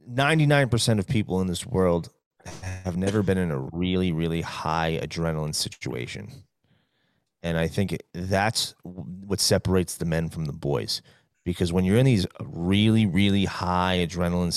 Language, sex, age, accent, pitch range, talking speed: English, male, 30-49, American, 90-115 Hz, 150 wpm